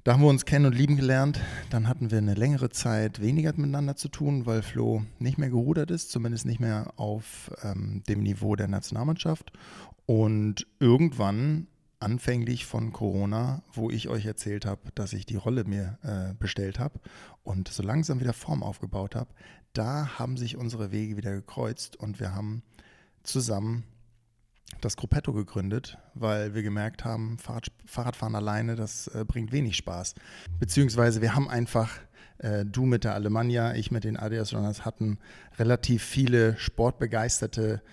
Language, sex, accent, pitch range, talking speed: German, male, German, 105-130 Hz, 160 wpm